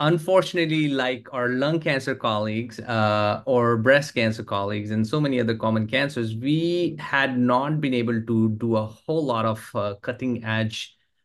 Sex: male